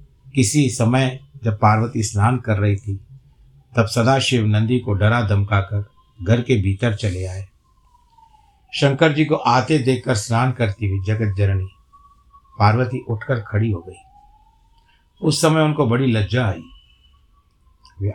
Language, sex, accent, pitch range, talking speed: Hindi, male, native, 105-125 Hz, 135 wpm